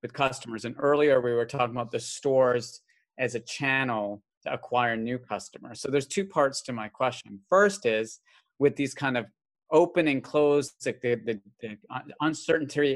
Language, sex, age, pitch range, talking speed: English, male, 30-49, 115-145 Hz, 175 wpm